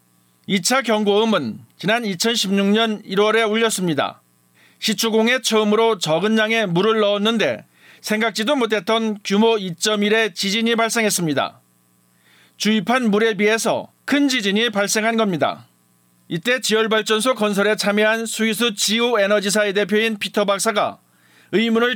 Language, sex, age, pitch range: Korean, male, 40-59, 195-225 Hz